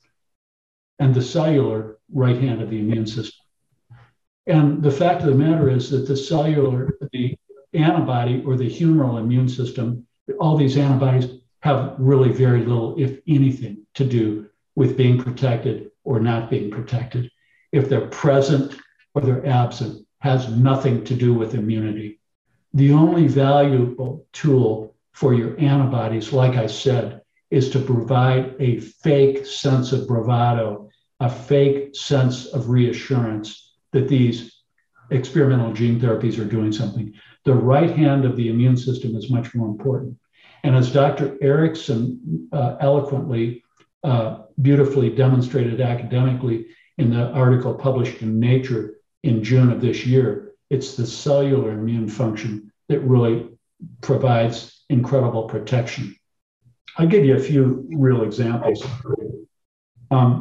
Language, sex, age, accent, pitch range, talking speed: English, male, 60-79, American, 115-135 Hz, 135 wpm